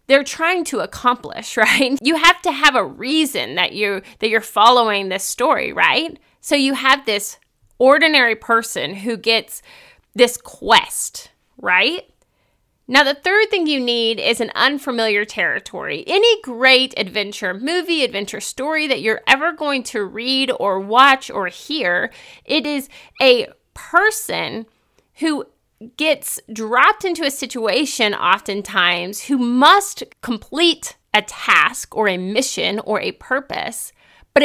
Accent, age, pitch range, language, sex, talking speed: American, 30-49, 220-295 Hz, English, female, 140 wpm